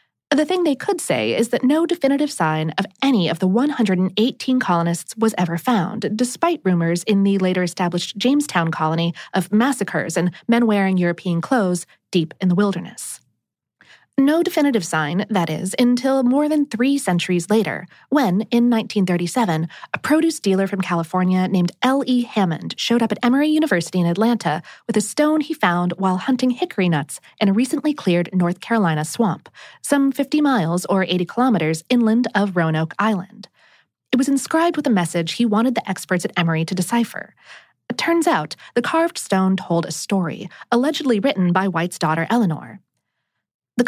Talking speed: 170 wpm